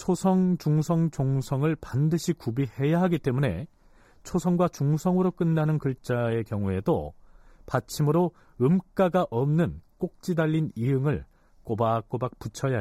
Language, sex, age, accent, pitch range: Korean, male, 40-59, native, 115-175 Hz